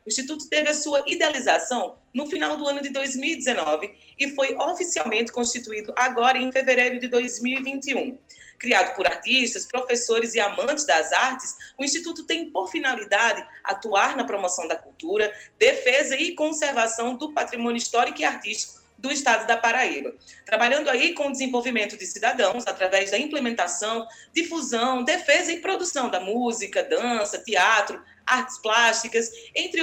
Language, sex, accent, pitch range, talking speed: Portuguese, female, Brazilian, 230-300 Hz, 145 wpm